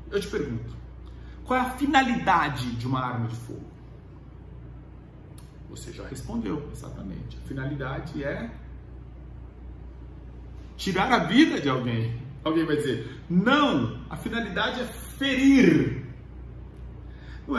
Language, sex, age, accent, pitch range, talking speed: English, male, 40-59, Brazilian, 115-160 Hz, 115 wpm